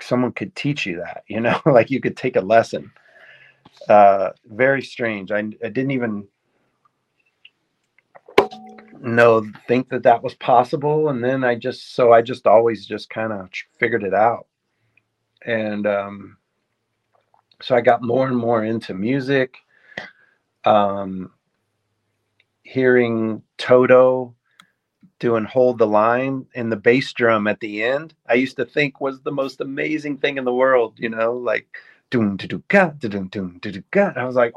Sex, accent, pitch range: male, American, 110-130 Hz